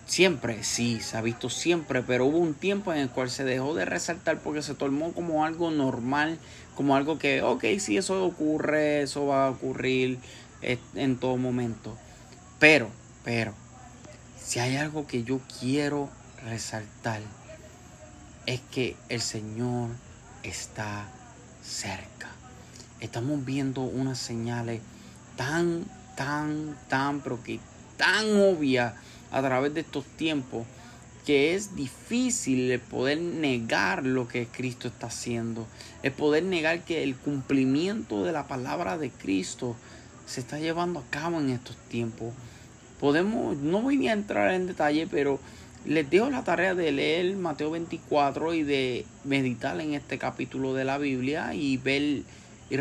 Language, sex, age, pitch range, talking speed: Spanish, male, 30-49, 120-150 Hz, 145 wpm